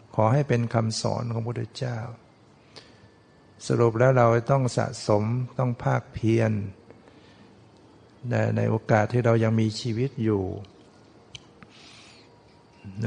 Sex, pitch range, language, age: male, 110-120 Hz, Thai, 60-79